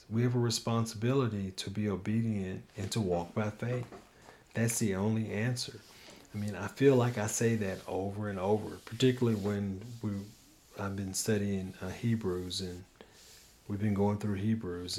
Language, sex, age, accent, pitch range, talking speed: English, male, 40-59, American, 95-120 Hz, 165 wpm